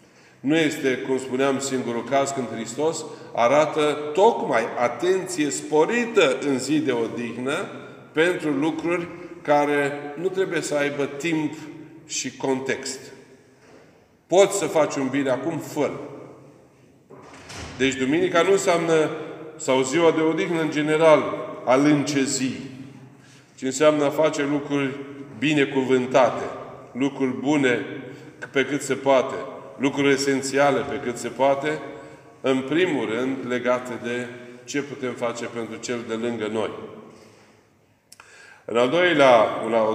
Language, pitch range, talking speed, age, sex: Romanian, 125-150 Hz, 120 wpm, 40-59, male